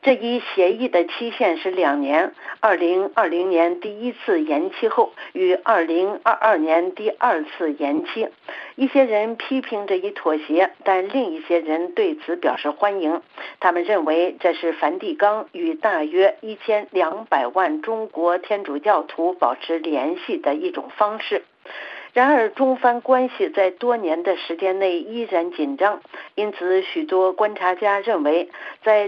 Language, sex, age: Chinese, female, 50-69